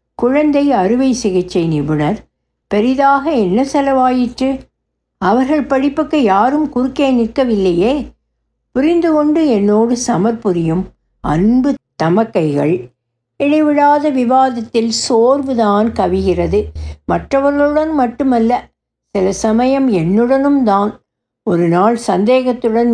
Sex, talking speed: female, 80 wpm